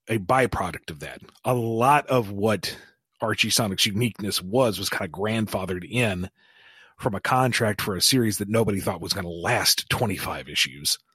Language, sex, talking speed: English, male, 170 wpm